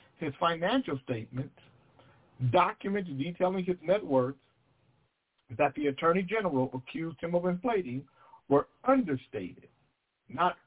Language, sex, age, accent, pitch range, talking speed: English, male, 60-79, American, 130-185 Hz, 105 wpm